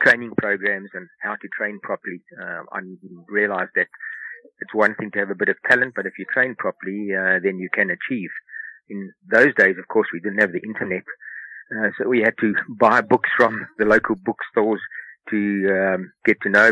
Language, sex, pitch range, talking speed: English, male, 100-115 Hz, 200 wpm